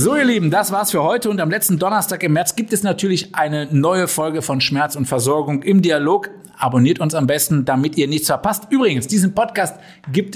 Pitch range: 125-170 Hz